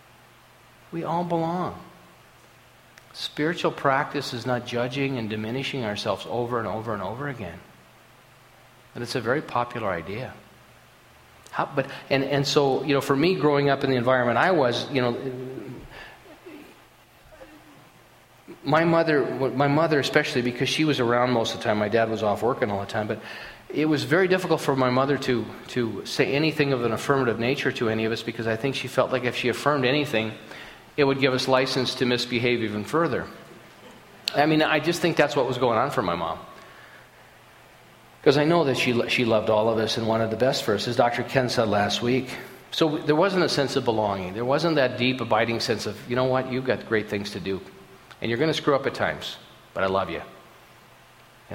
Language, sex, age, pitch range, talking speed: English, male, 40-59, 115-140 Hz, 200 wpm